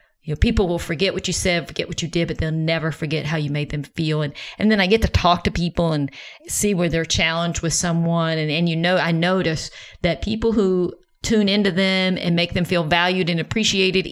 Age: 40-59